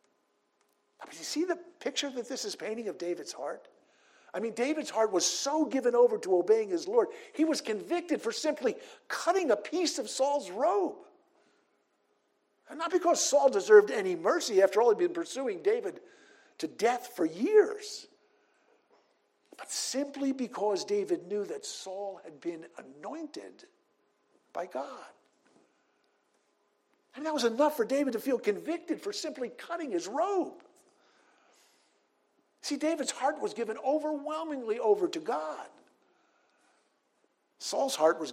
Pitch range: 225-375 Hz